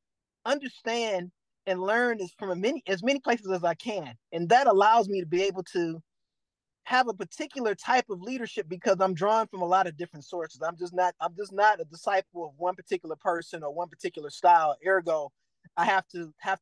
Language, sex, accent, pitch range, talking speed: English, male, American, 175-220 Hz, 200 wpm